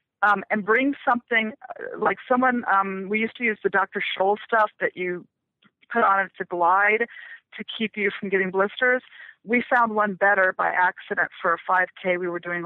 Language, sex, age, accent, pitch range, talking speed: English, female, 30-49, American, 190-235 Hz, 200 wpm